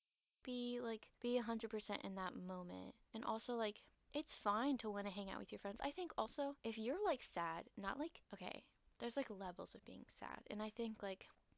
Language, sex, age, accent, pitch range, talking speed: English, female, 10-29, American, 190-240 Hz, 205 wpm